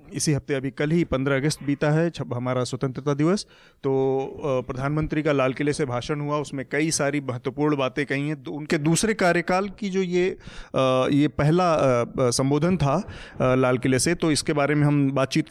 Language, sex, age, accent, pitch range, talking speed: Hindi, male, 30-49, native, 135-160 Hz, 185 wpm